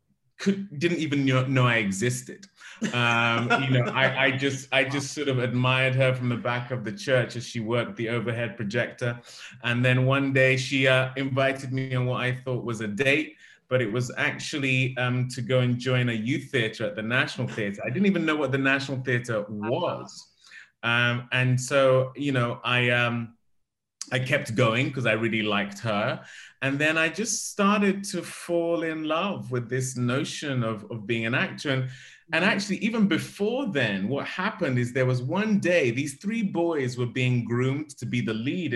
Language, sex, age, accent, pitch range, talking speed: English, male, 20-39, British, 120-150 Hz, 195 wpm